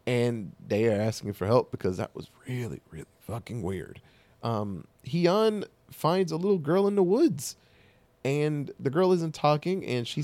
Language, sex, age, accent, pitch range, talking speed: English, male, 20-39, American, 115-165 Hz, 170 wpm